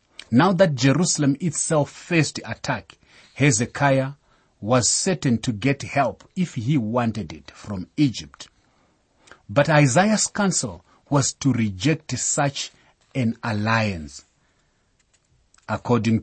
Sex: male